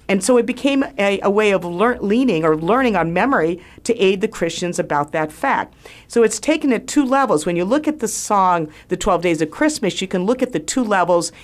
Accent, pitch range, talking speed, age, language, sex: American, 170-245 Hz, 235 wpm, 50-69, English, female